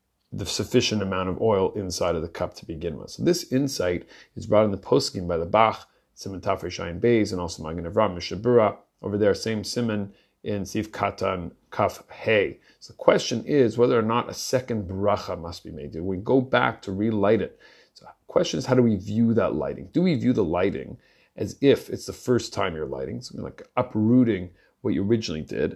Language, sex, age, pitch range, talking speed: English, male, 30-49, 95-120 Hz, 210 wpm